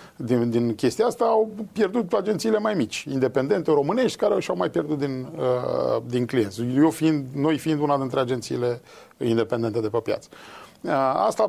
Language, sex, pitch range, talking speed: Romanian, male, 125-200 Hz, 165 wpm